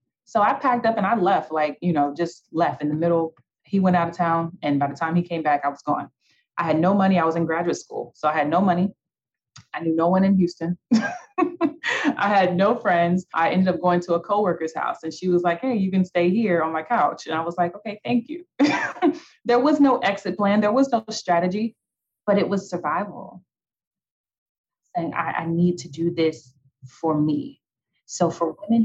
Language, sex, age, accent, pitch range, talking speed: English, female, 30-49, American, 160-205 Hz, 220 wpm